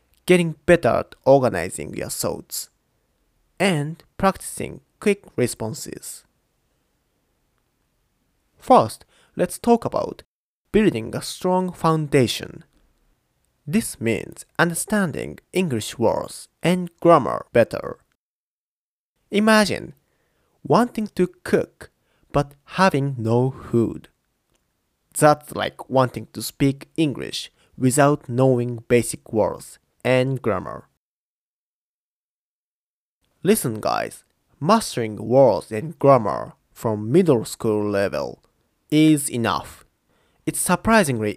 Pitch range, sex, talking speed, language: 120-180 Hz, male, 85 wpm, English